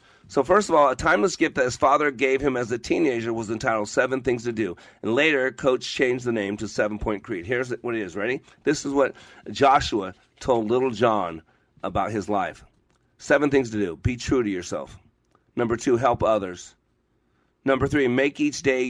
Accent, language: American, English